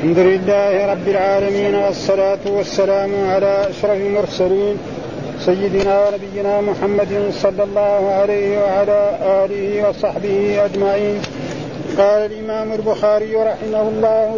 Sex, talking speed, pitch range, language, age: male, 100 wpm, 205-225 Hz, Arabic, 50-69